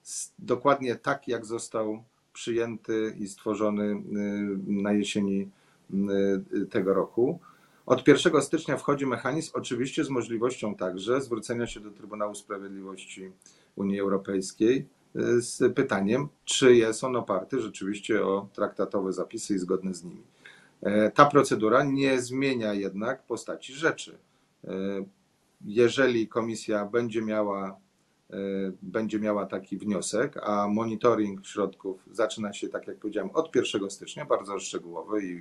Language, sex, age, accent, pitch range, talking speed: Polish, male, 40-59, native, 100-125 Hz, 120 wpm